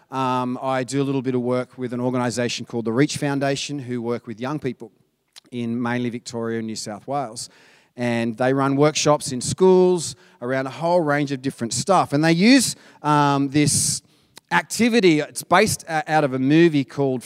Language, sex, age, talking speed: English, male, 30-49, 190 wpm